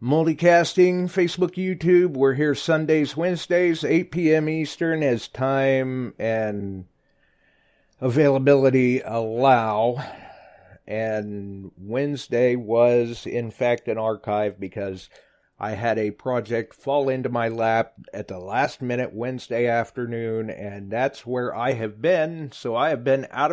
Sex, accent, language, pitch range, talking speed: male, American, English, 115-150 Hz, 120 wpm